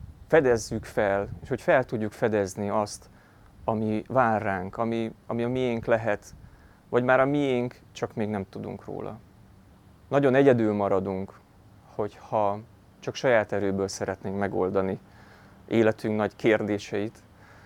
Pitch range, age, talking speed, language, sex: 100-115 Hz, 30-49, 125 wpm, Hungarian, male